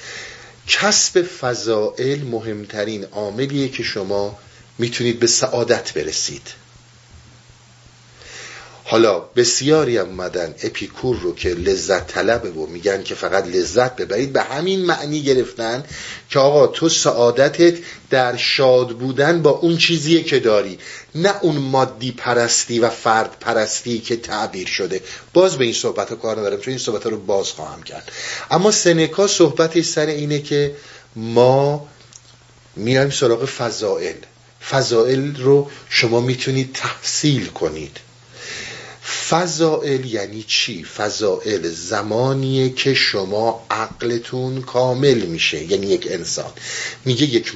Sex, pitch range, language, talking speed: male, 120-155 Hz, Persian, 120 wpm